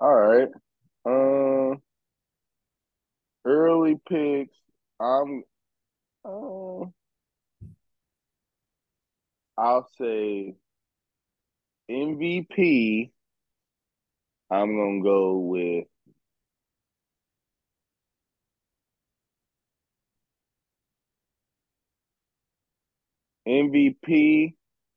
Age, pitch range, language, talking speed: 20-39, 100-155 Hz, English, 40 wpm